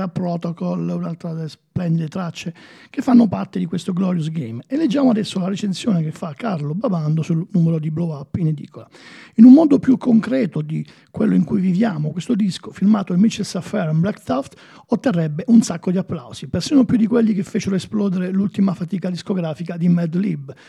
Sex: male